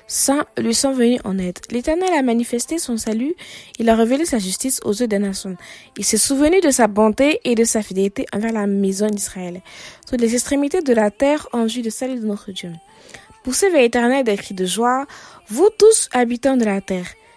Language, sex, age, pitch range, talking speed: French, female, 20-39, 215-280 Hz, 205 wpm